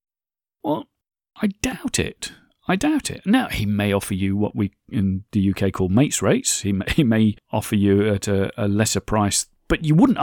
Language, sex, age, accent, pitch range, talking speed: English, male, 40-59, British, 105-170 Hz, 200 wpm